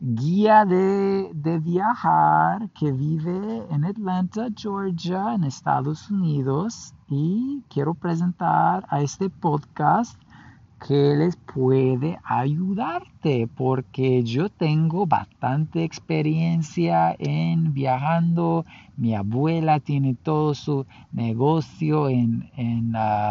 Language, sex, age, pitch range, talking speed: English, male, 50-69, 125-165 Hz, 95 wpm